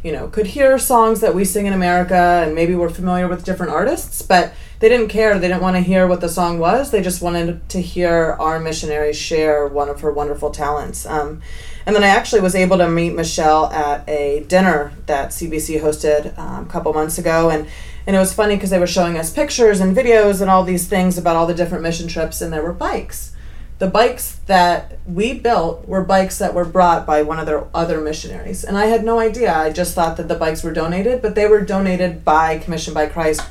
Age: 30-49